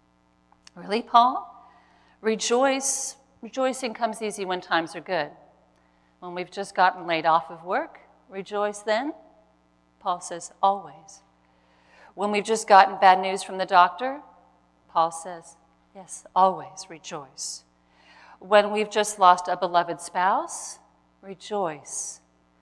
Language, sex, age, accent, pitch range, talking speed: English, female, 40-59, American, 160-215 Hz, 120 wpm